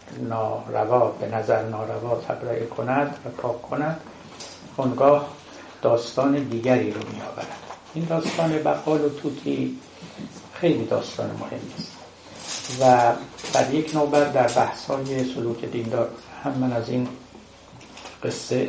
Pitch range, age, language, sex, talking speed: 115-140 Hz, 60-79, Persian, male, 120 wpm